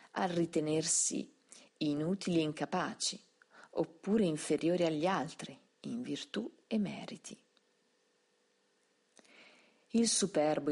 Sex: female